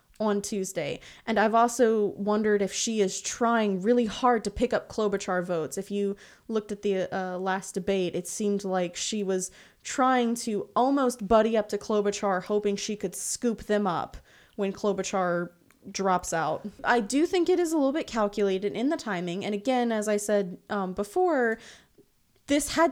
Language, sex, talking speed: English, female, 180 wpm